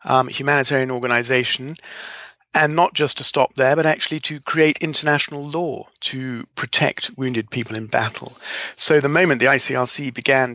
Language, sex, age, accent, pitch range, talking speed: English, male, 50-69, British, 125-145 Hz, 155 wpm